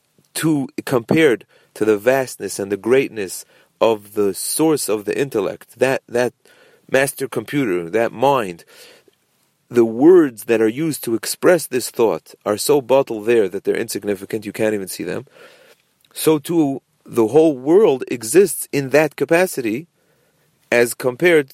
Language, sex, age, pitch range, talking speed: English, male, 40-59, 110-155 Hz, 145 wpm